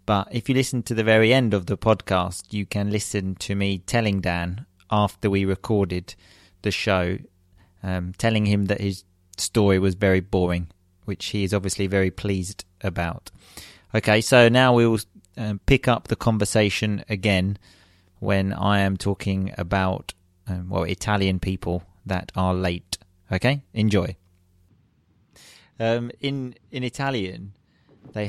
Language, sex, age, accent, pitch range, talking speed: English, male, 30-49, British, 95-120 Hz, 145 wpm